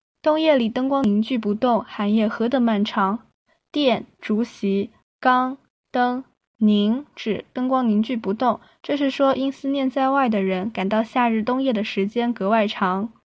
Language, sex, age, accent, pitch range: Chinese, female, 10-29, native, 210-265 Hz